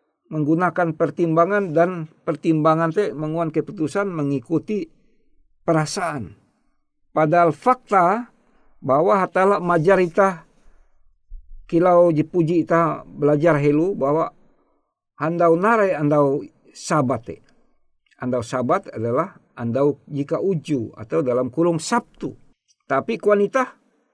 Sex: male